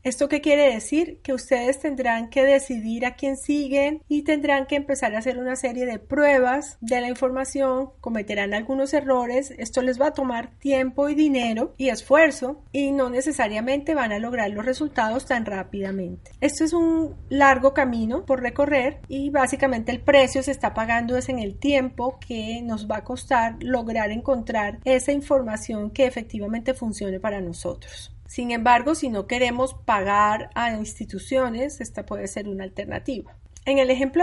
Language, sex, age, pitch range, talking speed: Spanish, female, 30-49, 230-275 Hz, 170 wpm